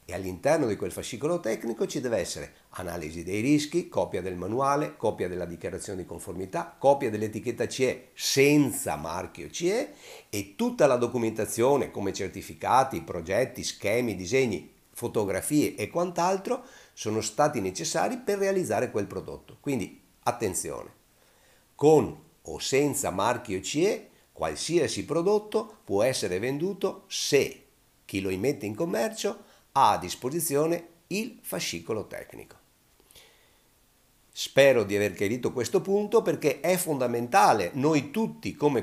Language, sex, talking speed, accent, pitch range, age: Italian, male, 125 wpm, native, 110-175 Hz, 50-69